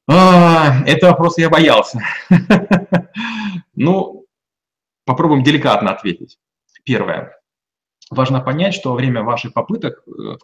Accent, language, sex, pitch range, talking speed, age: native, Russian, male, 115-155 Hz, 105 wpm, 30-49